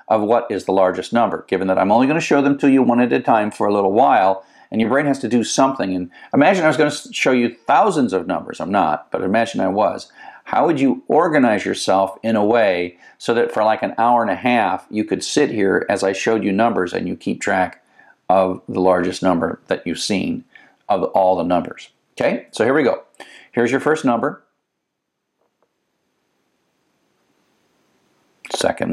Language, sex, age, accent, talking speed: English, male, 50-69, American, 200 wpm